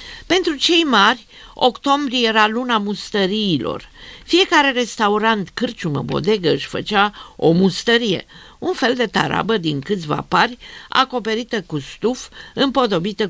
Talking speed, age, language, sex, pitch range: 115 wpm, 50-69, Romanian, female, 170-250 Hz